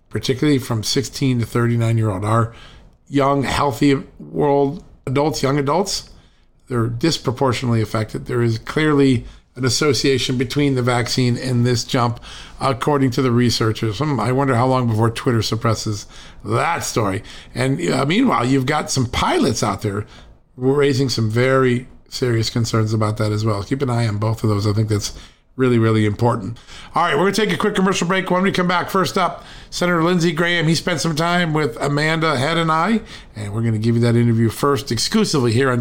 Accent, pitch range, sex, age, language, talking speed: American, 115-145 Hz, male, 50-69, English, 185 wpm